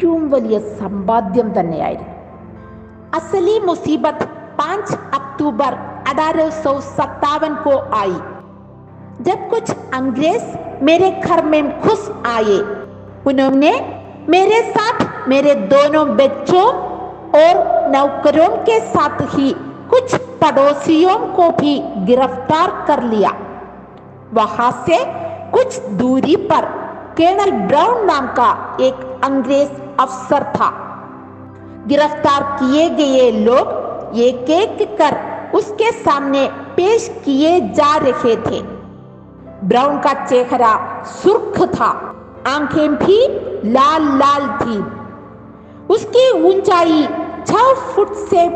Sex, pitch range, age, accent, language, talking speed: female, 260-355 Hz, 50-69, native, Malayalam, 35 wpm